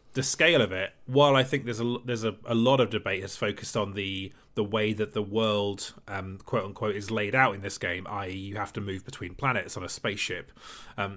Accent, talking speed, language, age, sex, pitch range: British, 235 wpm, English, 30-49, male, 105-130 Hz